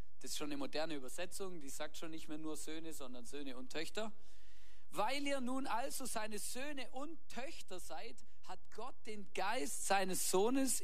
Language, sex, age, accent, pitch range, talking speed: German, male, 50-69, German, 150-205 Hz, 175 wpm